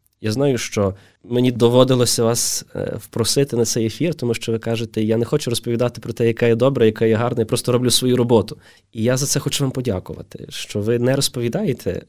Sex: male